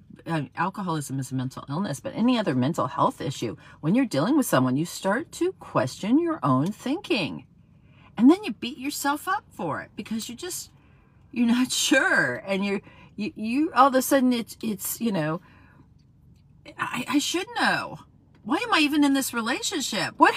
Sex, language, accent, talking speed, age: female, English, American, 185 wpm, 40-59